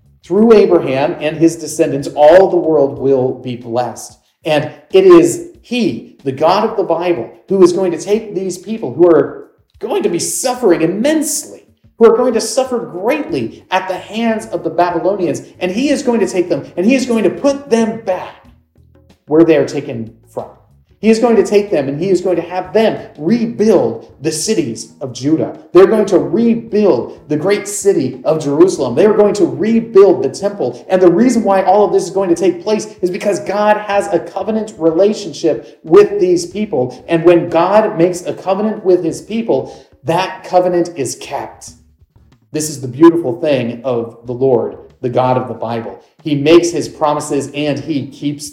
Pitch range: 150-220 Hz